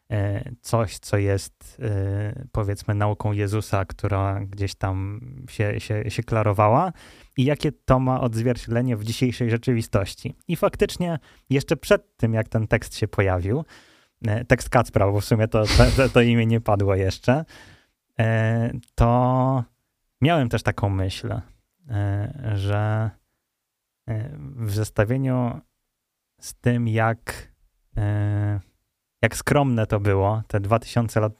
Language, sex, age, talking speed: Polish, male, 20-39, 115 wpm